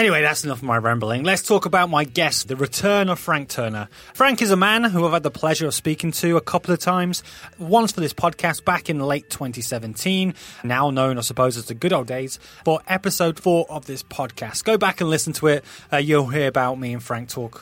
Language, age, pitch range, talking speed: English, 20-39, 130-180 Hz, 235 wpm